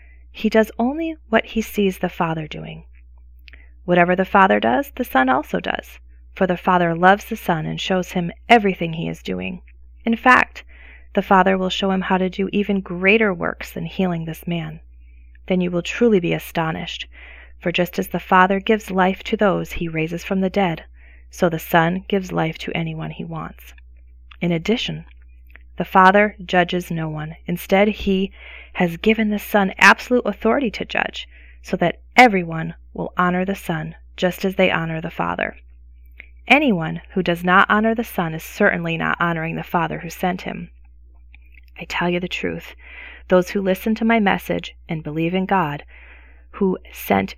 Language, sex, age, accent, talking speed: English, female, 30-49, American, 175 wpm